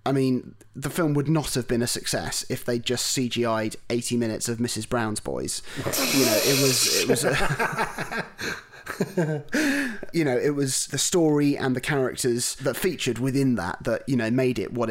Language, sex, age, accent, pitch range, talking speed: English, male, 30-49, British, 120-140 Hz, 185 wpm